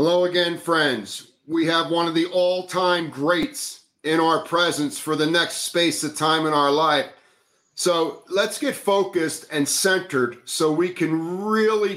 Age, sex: 40-59, male